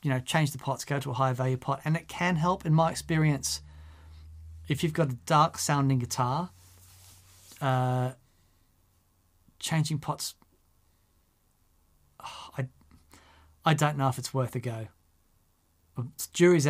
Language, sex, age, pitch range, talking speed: French, male, 30-49, 115-150 Hz, 140 wpm